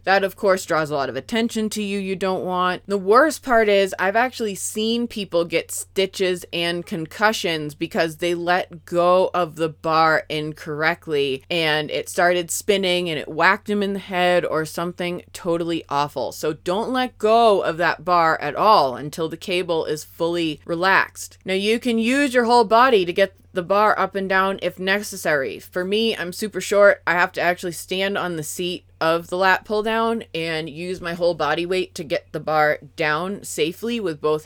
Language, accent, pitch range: English, American, 165-205 Hz